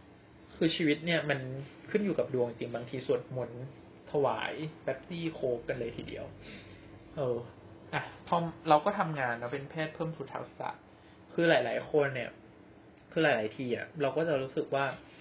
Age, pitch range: 20-39, 115-155 Hz